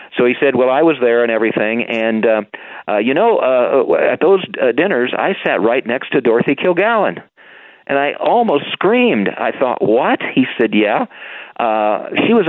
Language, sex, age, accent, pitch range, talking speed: English, male, 50-69, American, 110-145 Hz, 185 wpm